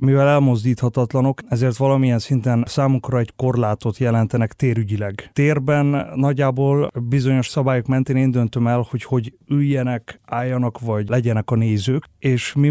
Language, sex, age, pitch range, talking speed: Hungarian, male, 30-49, 115-135 Hz, 130 wpm